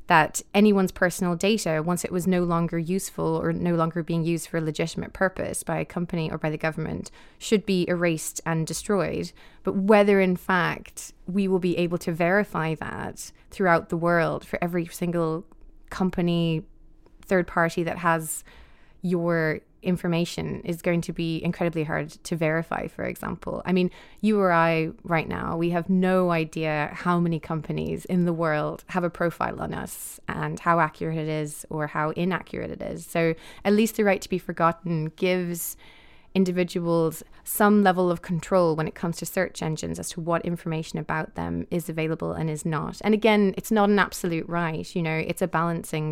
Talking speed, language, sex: 180 wpm, English, female